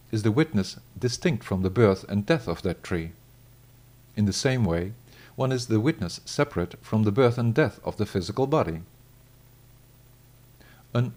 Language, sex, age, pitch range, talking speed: English, male, 50-69, 105-125 Hz, 165 wpm